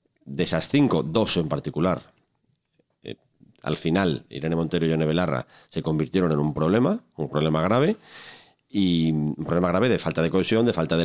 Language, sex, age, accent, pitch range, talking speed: Spanish, male, 40-59, Spanish, 75-95 Hz, 180 wpm